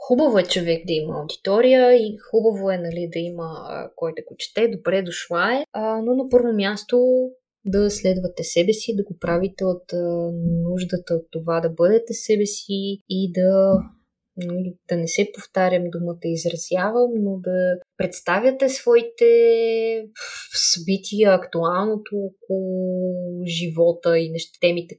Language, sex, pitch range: Bulgarian, female, 180-235 Hz